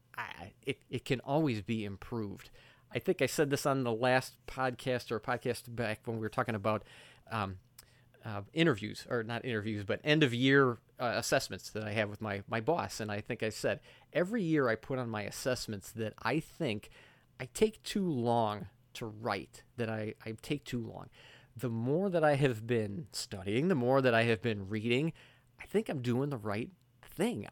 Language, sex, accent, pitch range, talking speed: English, male, American, 115-135 Hz, 195 wpm